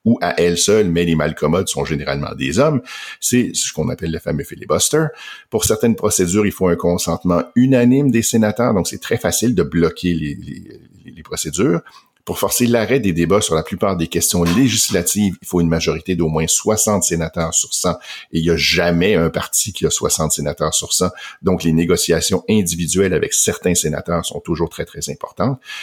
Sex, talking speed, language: male, 195 wpm, French